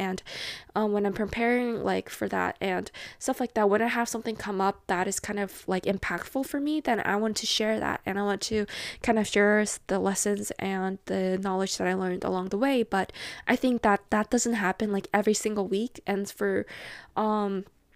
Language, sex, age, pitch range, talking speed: English, female, 10-29, 200-235 Hz, 215 wpm